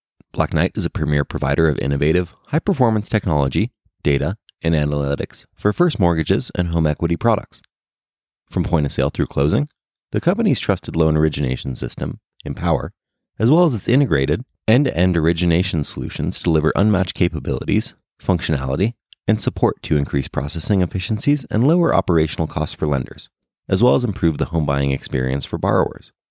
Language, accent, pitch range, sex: English, American, 75-105 Hz, male